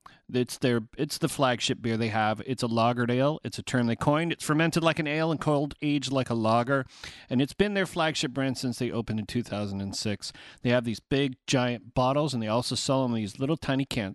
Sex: male